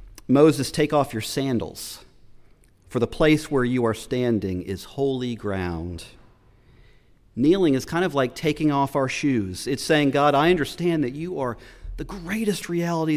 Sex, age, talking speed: male, 40-59, 160 wpm